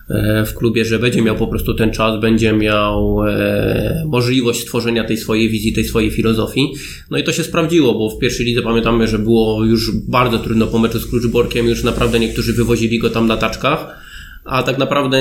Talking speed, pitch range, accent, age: 195 wpm, 115-135 Hz, native, 20-39